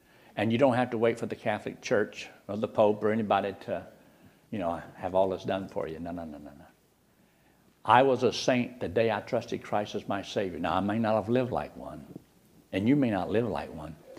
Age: 60-79